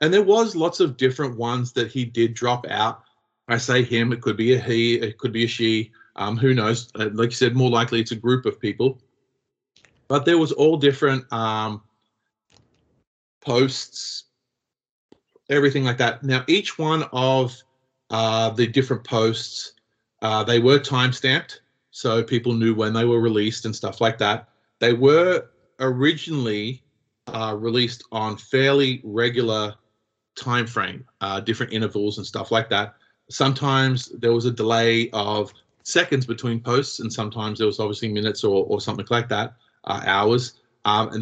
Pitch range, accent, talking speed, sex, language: 110-130 Hz, Australian, 165 wpm, male, English